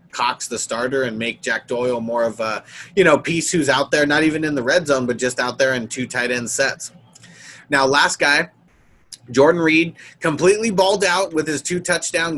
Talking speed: 205 wpm